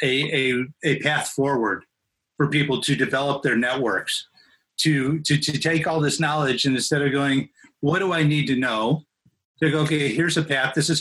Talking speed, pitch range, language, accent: 200 wpm, 130-155 Hz, English, American